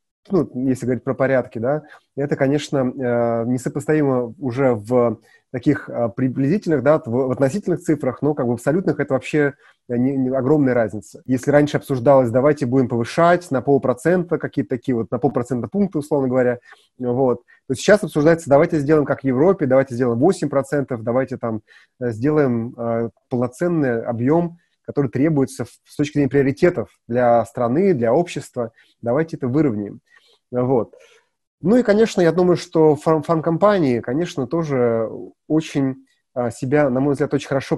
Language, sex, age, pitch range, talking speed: Russian, male, 30-49, 125-150 Hz, 150 wpm